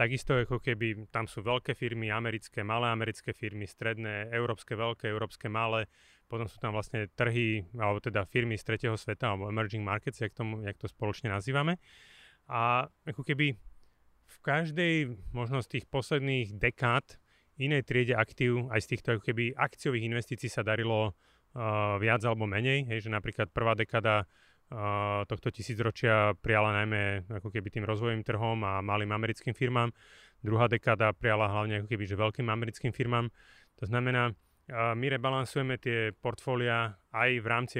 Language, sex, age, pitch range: Slovak, male, 30-49, 105-125 Hz